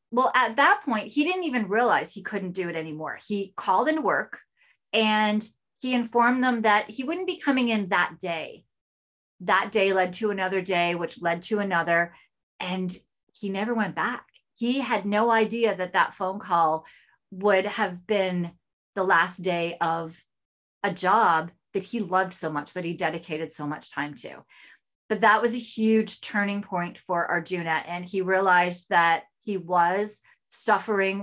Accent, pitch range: American, 175-215 Hz